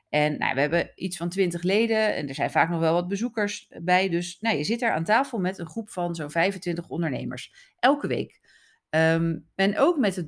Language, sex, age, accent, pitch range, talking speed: Dutch, female, 40-59, Dutch, 165-220 Hz, 205 wpm